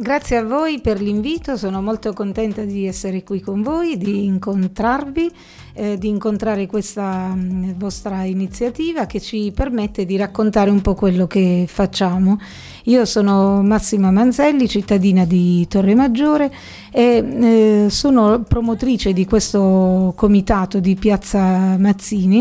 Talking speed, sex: 125 wpm, female